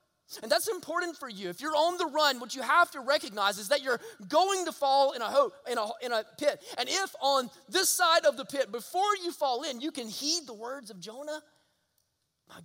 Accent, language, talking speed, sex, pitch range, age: American, English, 230 wpm, male, 205-280 Hz, 20-39